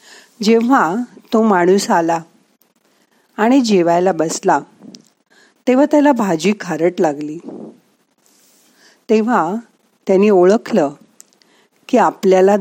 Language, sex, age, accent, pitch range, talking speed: Marathi, female, 50-69, native, 185-240 Hz, 80 wpm